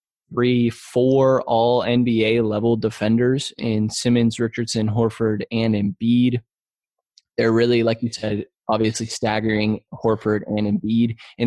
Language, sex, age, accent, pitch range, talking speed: English, male, 20-39, American, 110-125 Hz, 110 wpm